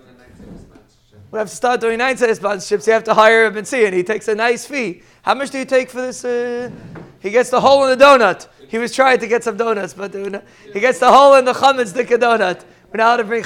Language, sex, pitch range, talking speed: English, male, 220-275 Hz, 265 wpm